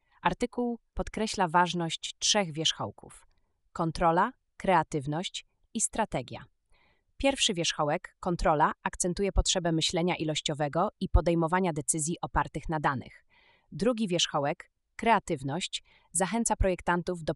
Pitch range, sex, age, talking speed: 155-185 Hz, female, 30-49, 95 wpm